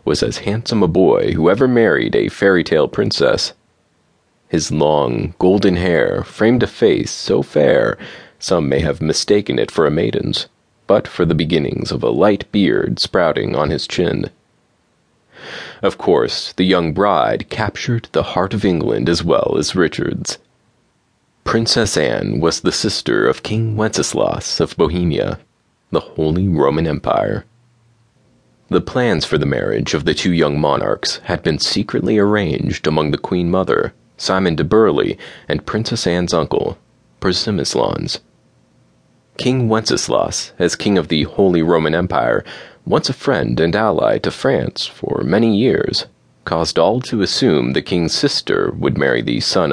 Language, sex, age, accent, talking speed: English, male, 30-49, American, 150 wpm